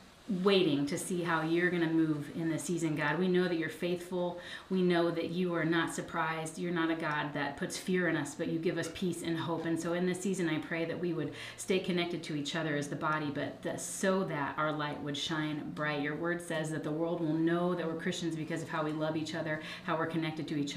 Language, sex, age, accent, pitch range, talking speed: English, female, 30-49, American, 150-170 Hz, 255 wpm